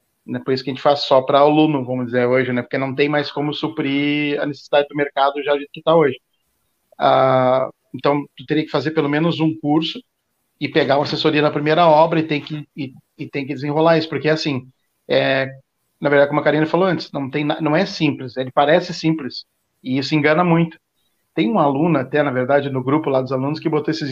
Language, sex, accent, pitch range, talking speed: Portuguese, male, Brazilian, 140-160 Hz, 225 wpm